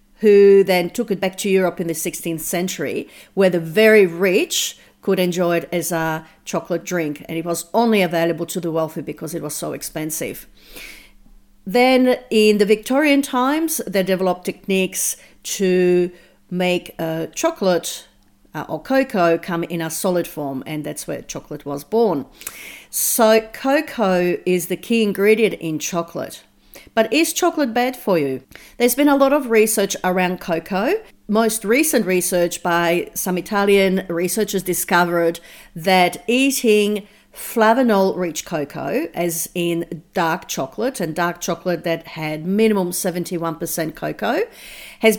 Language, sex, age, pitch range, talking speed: English, female, 40-59, 170-220 Hz, 145 wpm